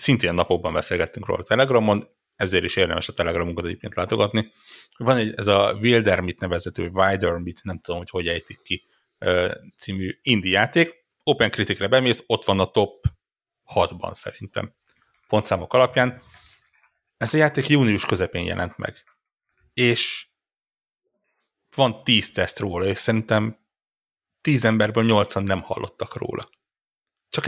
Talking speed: 135 wpm